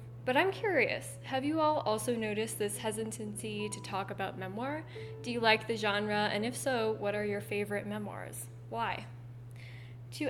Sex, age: female, 10-29